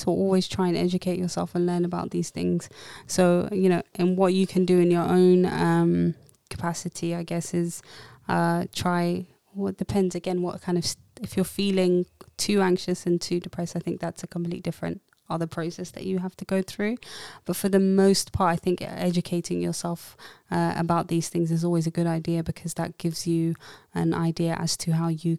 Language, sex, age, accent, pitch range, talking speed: English, female, 20-39, British, 165-180 Hz, 200 wpm